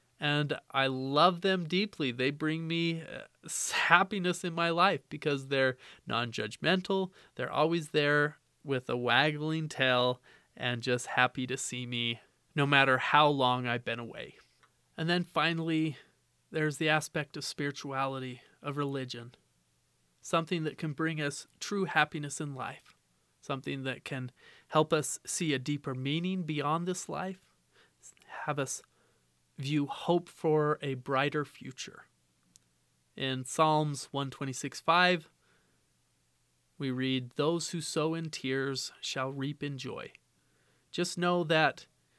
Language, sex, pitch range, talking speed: English, male, 130-160 Hz, 130 wpm